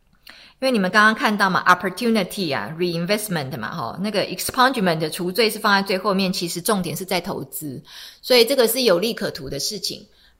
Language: Chinese